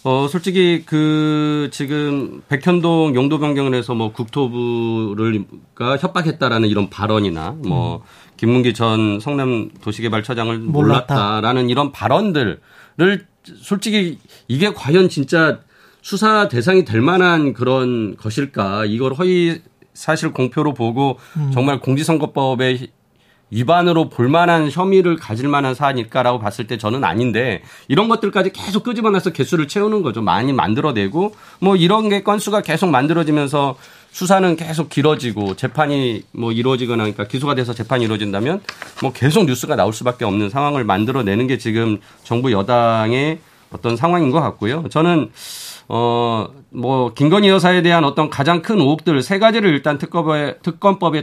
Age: 40-59